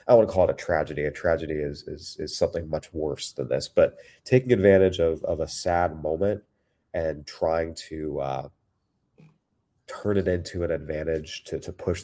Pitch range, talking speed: 85-100 Hz, 180 wpm